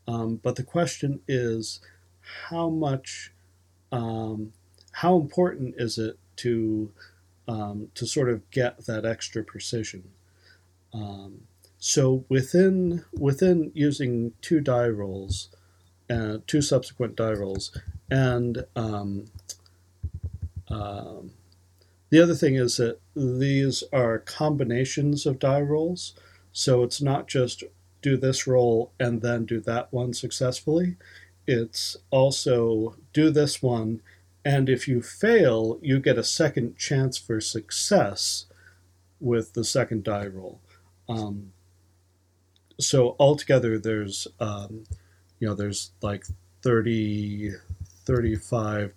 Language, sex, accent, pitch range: English, male, American, 95-125 Hz